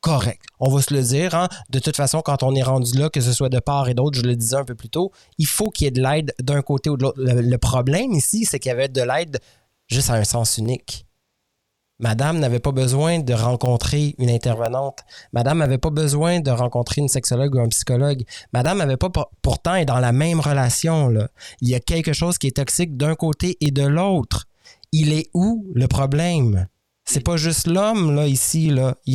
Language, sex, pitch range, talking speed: French, male, 125-160 Hz, 230 wpm